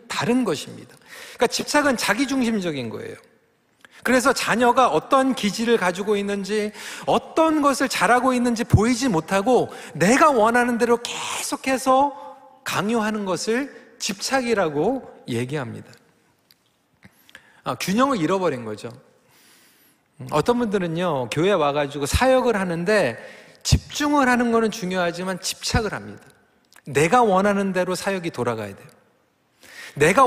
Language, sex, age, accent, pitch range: Korean, male, 40-59, native, 195-255 Hz